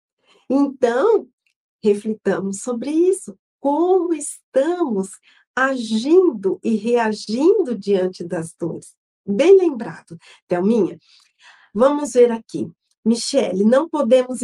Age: 40-59